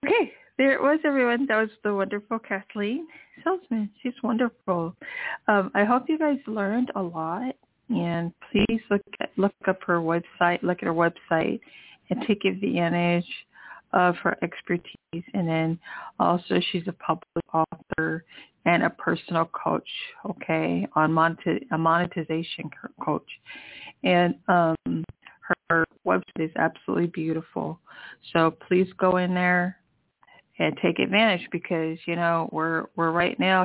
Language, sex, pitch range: English, female, 165-205 Hz